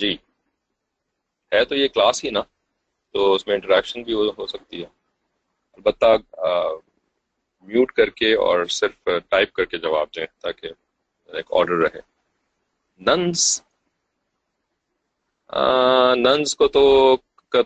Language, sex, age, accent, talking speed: English, male, 30-49, Indian, 110 wpm